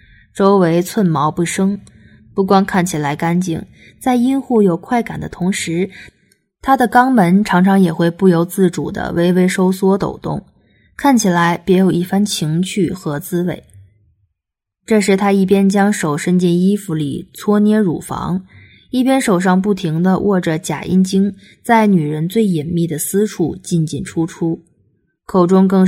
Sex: female